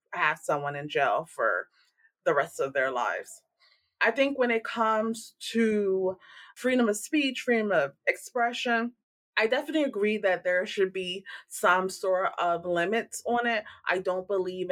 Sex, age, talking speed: female, 20-39, 155 wpm